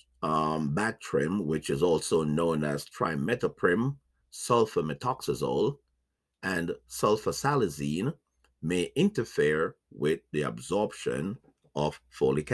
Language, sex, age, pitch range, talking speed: English, male, 50-69, 65-80 Hz, 85 wpm